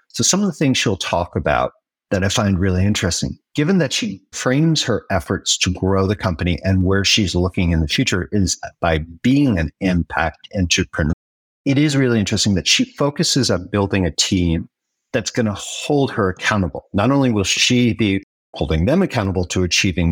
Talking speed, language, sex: 190 wpm, English, male